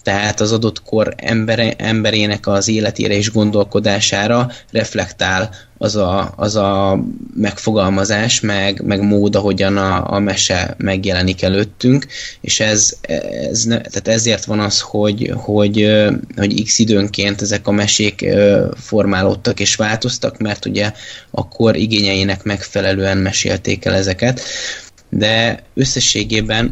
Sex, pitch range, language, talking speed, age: male, 100-115 Hz, Hungarian, 110 wpm, 20-39